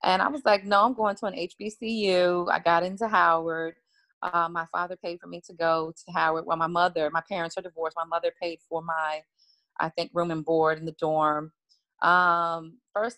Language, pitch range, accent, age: English, 170-205 Hz, American, 30-49